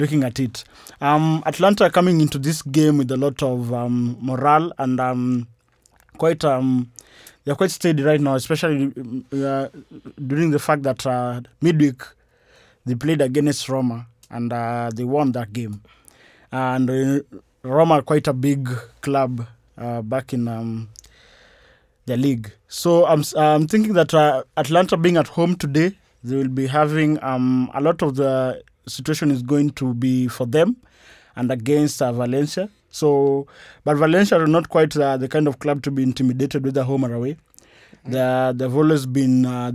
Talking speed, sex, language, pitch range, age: 170 wpm, male, English, 125-150 Hz, 20-39